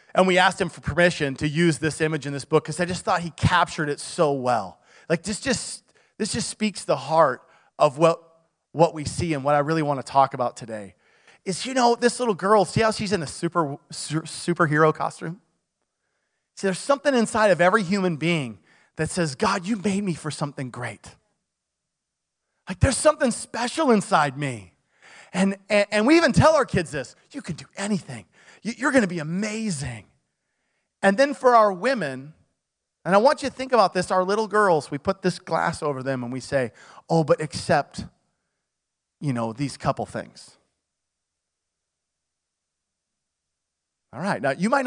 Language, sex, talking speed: English, male, 185 wpm